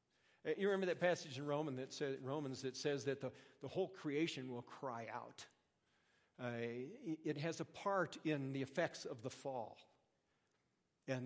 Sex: male